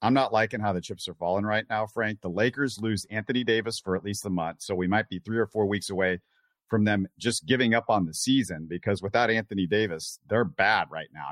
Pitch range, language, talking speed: 95-125 Hz, English, 245 wpm